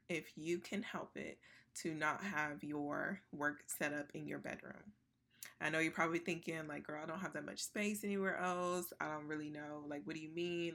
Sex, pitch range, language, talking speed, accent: female, 145-175 Hz, English, 220 wpm, American